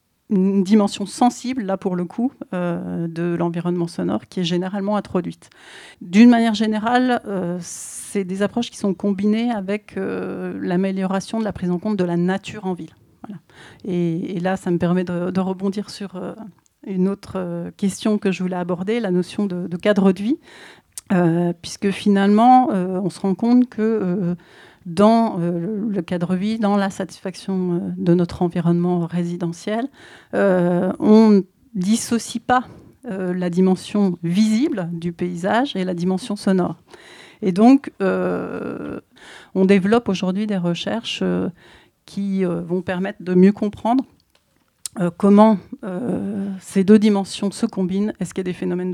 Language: French